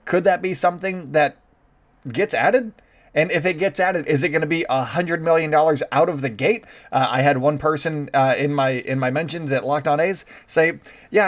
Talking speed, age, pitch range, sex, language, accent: 225 wpm, 20-39, 130-155 Hz, male, English, American